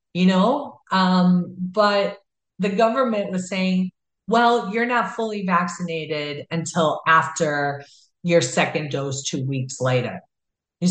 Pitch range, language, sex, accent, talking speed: 155-225 Hz, English, female, American, 120 wpm